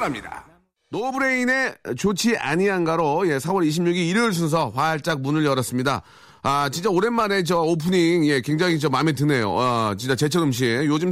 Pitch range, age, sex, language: 115-160 Hz, 30-49, male, Korean